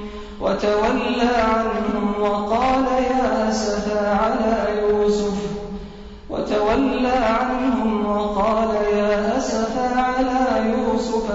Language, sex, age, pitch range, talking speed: Arabic, male, 30-49, 210-225 Hz, 70 wpm